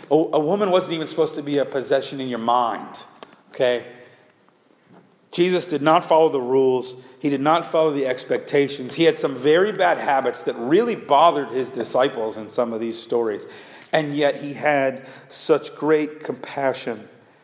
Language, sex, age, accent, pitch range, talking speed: English, male, 50-69, American, 130-170 Hz, 165 wpm